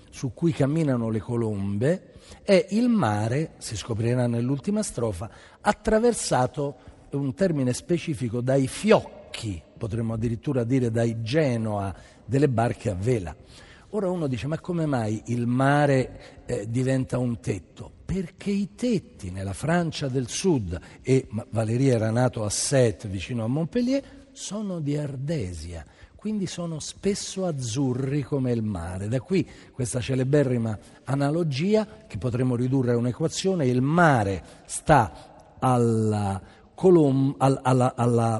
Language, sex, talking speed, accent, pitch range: Italian, male, 125 wpm, native, 115-150 Hz